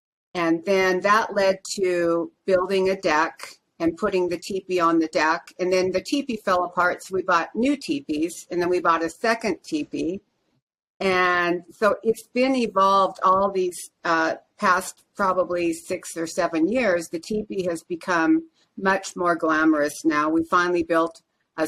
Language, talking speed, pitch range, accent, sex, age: English, 165 wpm, 165-195 Hz, American, female, 50-69